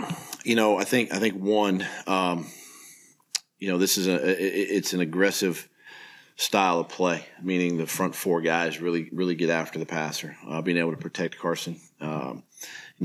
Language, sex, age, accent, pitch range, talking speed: English, male, 40-59, American, 85-95 Hz, 175 wpm